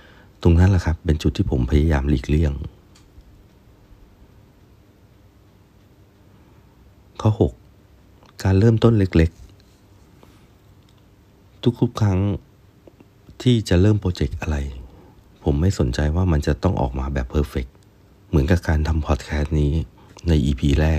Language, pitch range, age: Thai, 80-100 Hz, 60-79